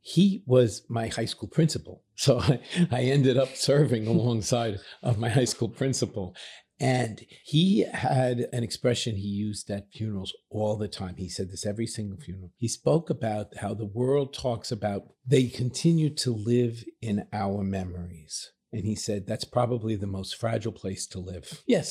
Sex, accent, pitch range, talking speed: male, American, 105-130 Hz, 170 wpm